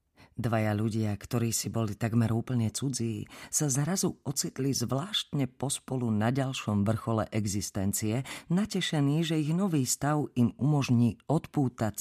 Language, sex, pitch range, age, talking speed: Slovak, female, 110-140 Hz, 40-59, 125 wpm